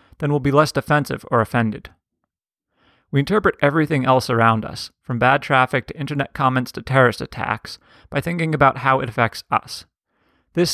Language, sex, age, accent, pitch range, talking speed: English, male, 30-49, American, 125-155 Hz, 170 wpm